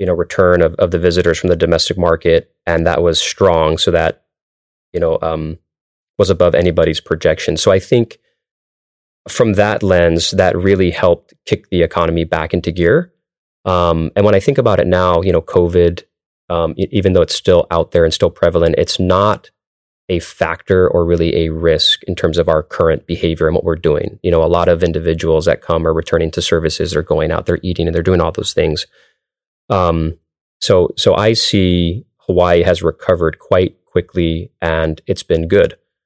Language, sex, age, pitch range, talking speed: English, male, 30-49, 80-90 Hz, 195 wpm